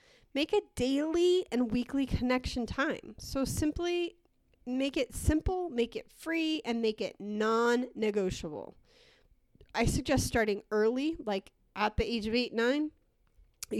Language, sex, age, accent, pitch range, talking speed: English, female, 30-49, American, 210-255 Hz, 130 wpm